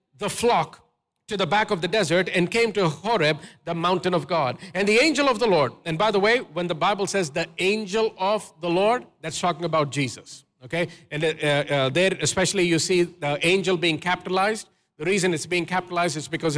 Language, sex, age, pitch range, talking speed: English, male, 50-69, 165-235 Hz, 210 wpm